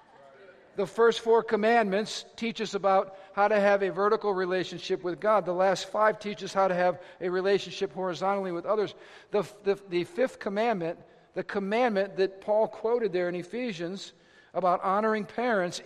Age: 50-69